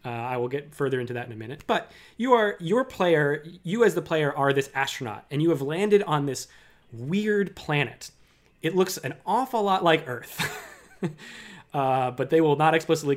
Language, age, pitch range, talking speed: English, 20-39, 125-165 Hz, 195 wpm